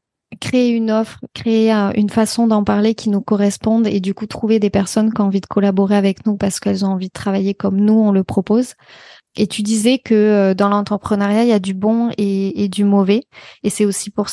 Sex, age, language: female, 20-39, French